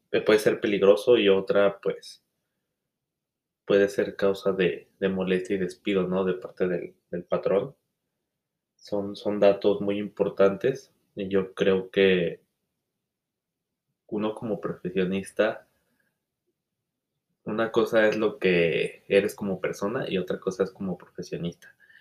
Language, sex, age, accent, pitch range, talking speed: Spanish, male, 20-39, Mexican, 95-105 Hz, 125 wpm